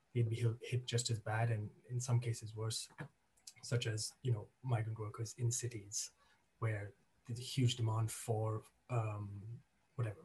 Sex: male